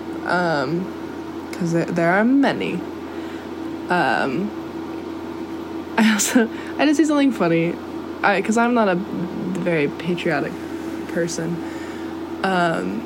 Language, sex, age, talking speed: English, female, 10-29, 110 wpm